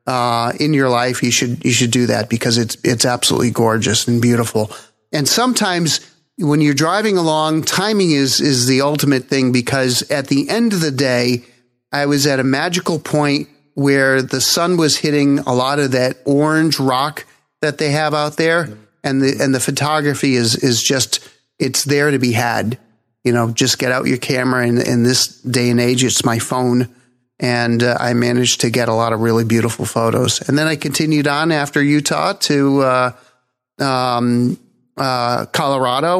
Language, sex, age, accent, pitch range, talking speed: English, male, 40-59, American, 125-150 Hz, 185 wpm